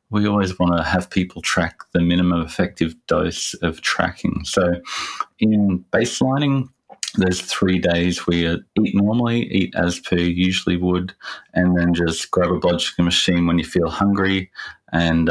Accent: Australian